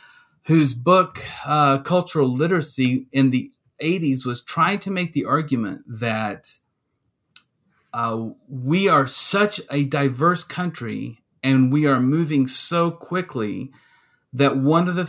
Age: 40-59